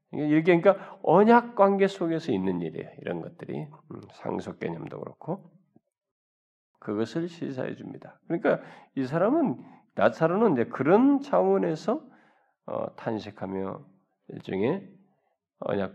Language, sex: Korean, male